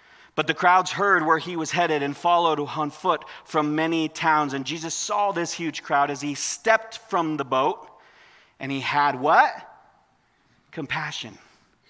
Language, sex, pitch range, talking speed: English, male, 145-210 Hz, 160 wpm